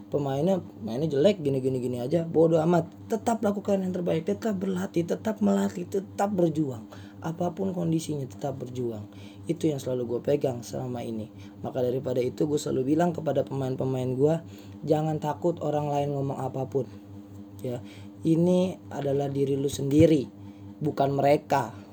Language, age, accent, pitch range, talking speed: Indonesian, 20-39, native, 100-150 Hz, 140 wpm